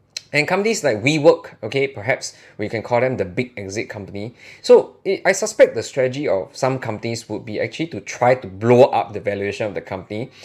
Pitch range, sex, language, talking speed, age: 100-135 Hz, male, English, 205 wpm, 20-39